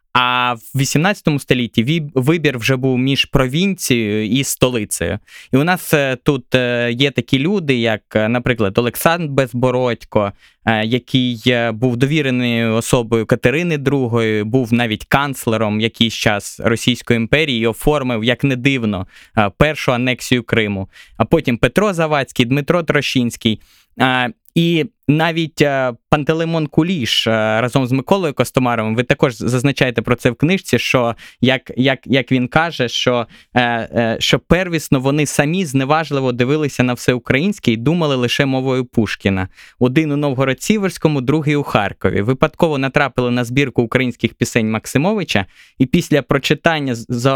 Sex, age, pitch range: male, 20-39, 120-150 Hz